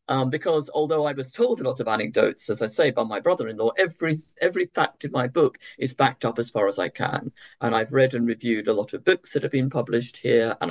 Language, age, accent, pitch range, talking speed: English, 50-69, British, 130-180 Hz, 250 wpm